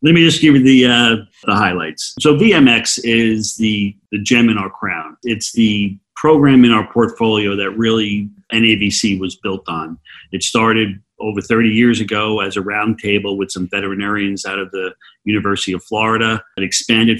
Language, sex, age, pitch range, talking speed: English, male, 40-59, 100-120 Hz, 180 wpm